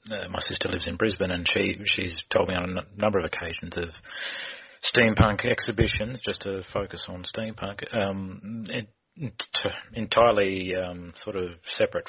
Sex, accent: male, Australian